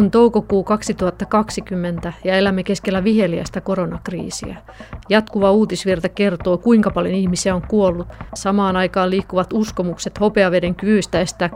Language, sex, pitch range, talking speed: Finnish, female, 180-210 Hz, 120 wpm